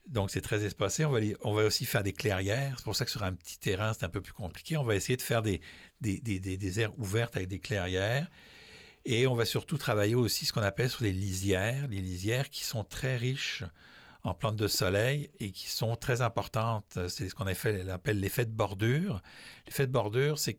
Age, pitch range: 60-79, 95-125 Hz